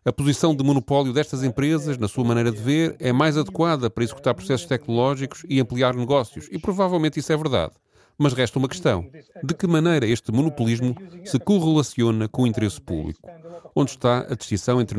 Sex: male